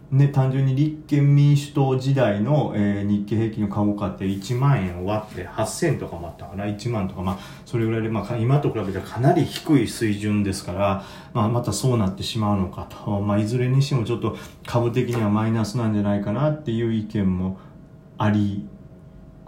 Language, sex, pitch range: Japanese, male, 100-145 Hz